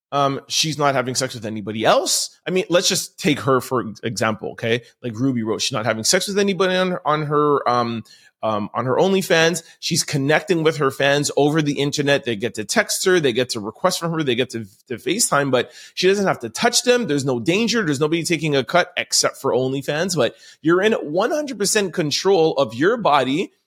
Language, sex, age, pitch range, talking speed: English, male, 30-49, 130-185 Hz, 215 wpm